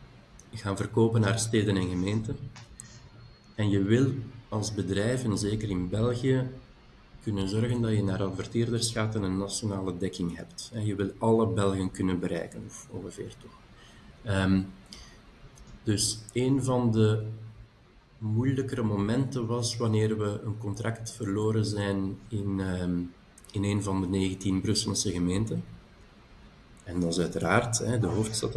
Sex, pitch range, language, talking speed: male, 100-115 Hz, Dutch, 140 wpm